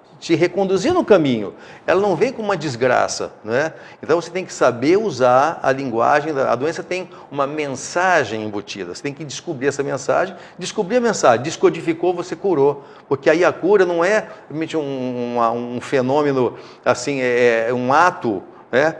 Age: 50-69